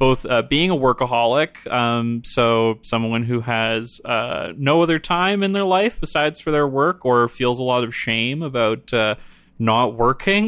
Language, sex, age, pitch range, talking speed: English, male, 20-39, 120-145 Hz, 175 wpm